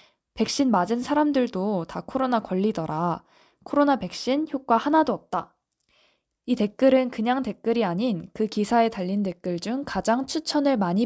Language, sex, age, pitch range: Korean, female, 20-39, 190-250 Hz